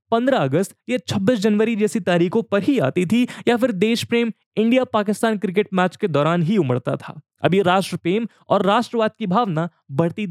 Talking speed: 190 wpm